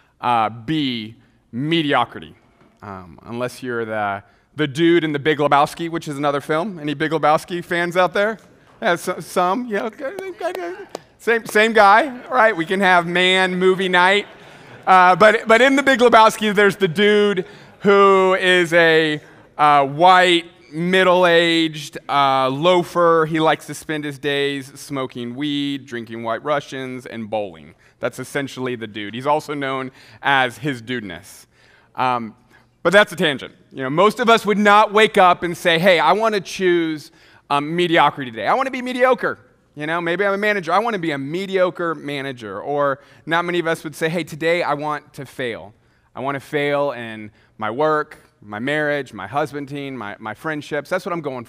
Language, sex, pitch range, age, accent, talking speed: English, male, 135-185 Hz, 30-49, American, 180 wpm